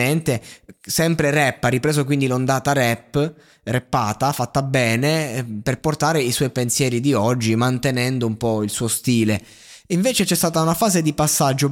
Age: 20-39